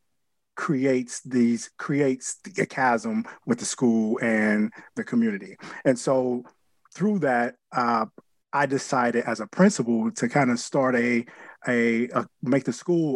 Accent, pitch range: American, 115-135 Hz